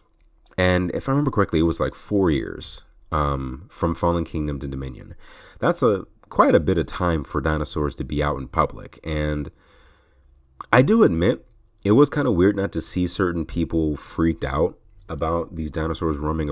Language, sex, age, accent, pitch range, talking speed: English, male, 30-49, American, 75-90 Hz, 180 wpm